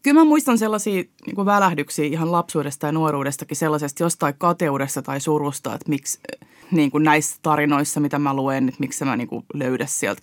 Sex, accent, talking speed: female, native, 180 wpm